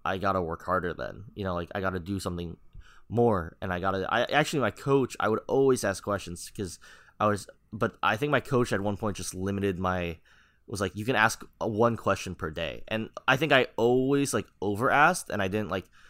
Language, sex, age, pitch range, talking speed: English, male, 20-39, 90-115 Hz, 235 wpm